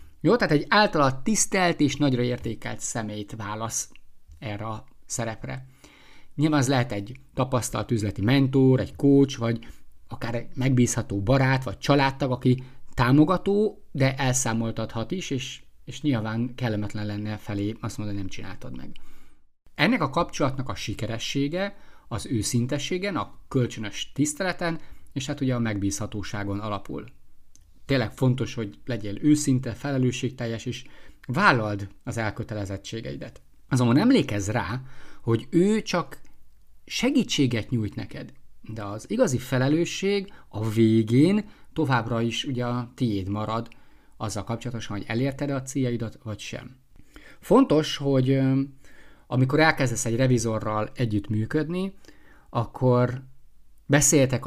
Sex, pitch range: male, 110-140 Hz